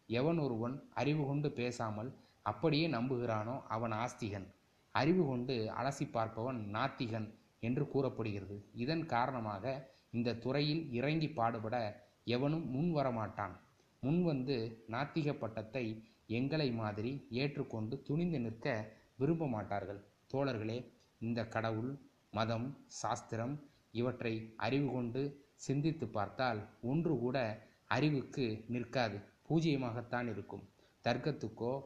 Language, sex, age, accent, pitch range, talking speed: Tamil, male, 20-39, native, 110-140 Hz, 95 wpm